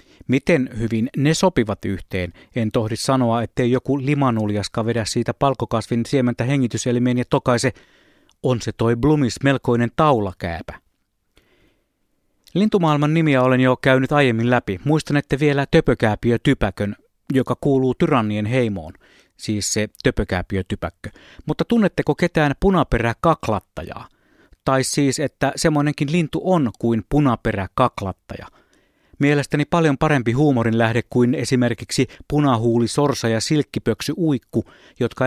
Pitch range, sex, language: 115-145 Hz, male, Finnish